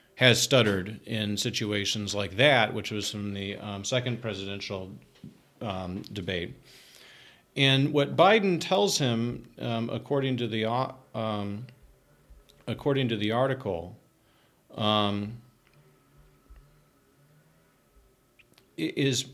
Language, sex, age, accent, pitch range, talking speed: English, male, 40-59, American, 105-130 Hz, 95 wpm